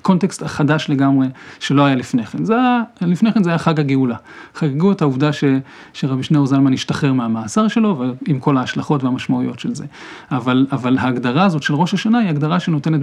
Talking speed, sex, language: 185 wpm, male, Hebrew